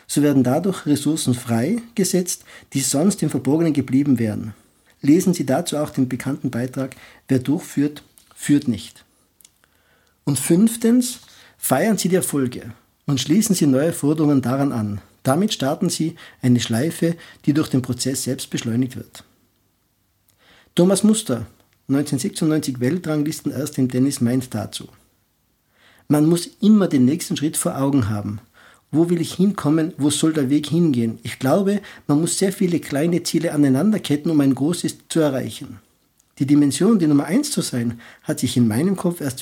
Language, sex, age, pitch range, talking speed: German, male, 50-69, 125-165 Hz, 155 wpm